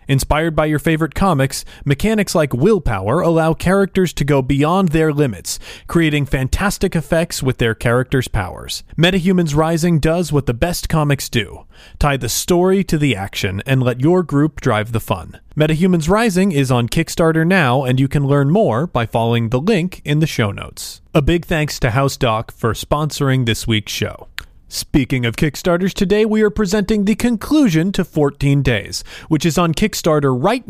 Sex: male